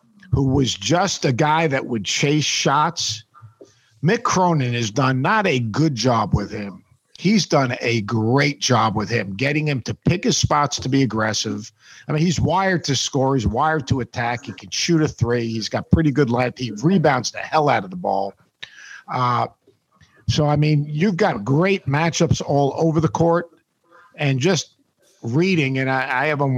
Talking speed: 185 wpm